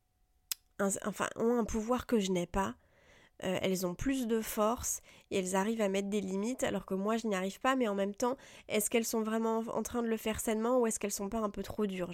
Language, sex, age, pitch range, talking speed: French, female, 20-39, 185-220 Hz, 255 wpm